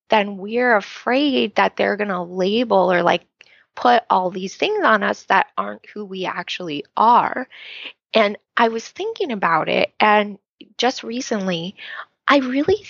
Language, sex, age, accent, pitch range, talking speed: English, female, 20-39, American, 185-240 Hz, 150 wpm